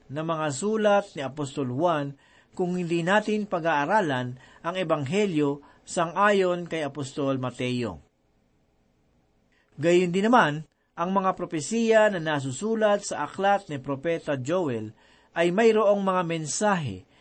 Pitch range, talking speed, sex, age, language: 145-205 Hz, 115 wpm, male, 40-59, Filipino